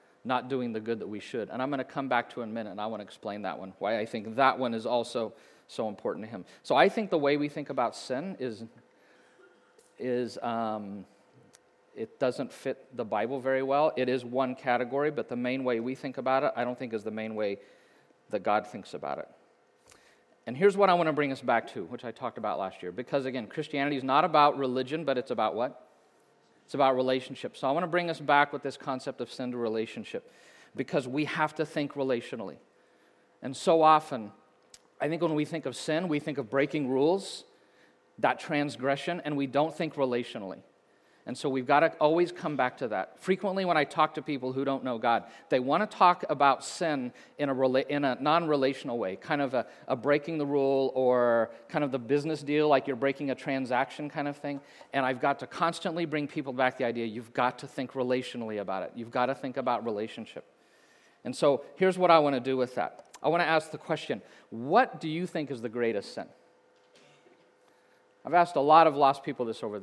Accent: American